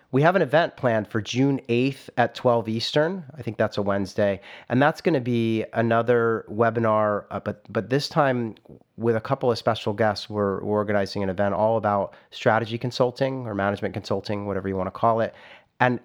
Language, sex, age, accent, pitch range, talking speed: English, male, 30-49, American, 100-125 Hz, 200 wpm